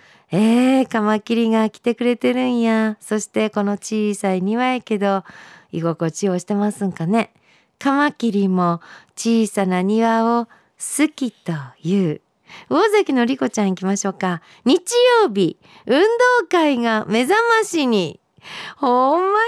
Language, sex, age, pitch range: Japanese, female, 50-69, 180-285 Hz